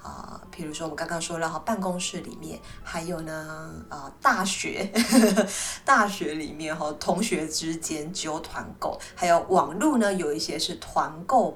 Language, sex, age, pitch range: Chinese, female, 20-39, 165-205 Hz